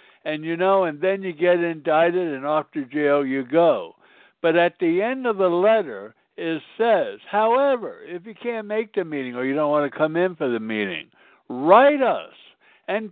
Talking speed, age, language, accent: 195 wpm, 60-79, English, American